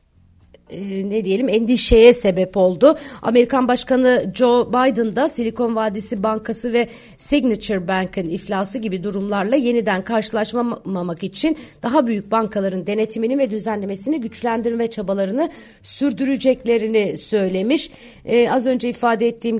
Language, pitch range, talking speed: Turkish, 195-240 Hz, 115 wpm